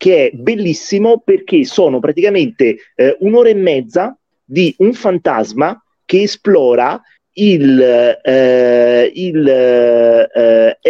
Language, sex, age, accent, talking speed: Italian, male, 30-49, native, 105 wpm